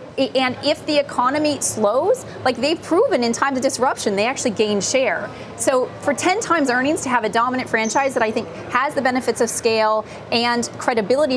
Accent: American